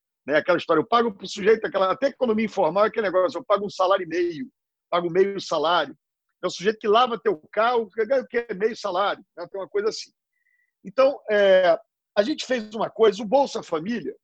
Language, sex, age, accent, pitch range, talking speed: Portuguese, male, 50-69, Brazilian, 175-240 Hz, 210 wpm